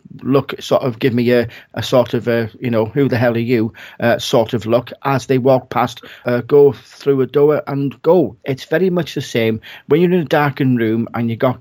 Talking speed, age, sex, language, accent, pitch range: 240 wpm, 40-59, male, English, British, 115-135 Hz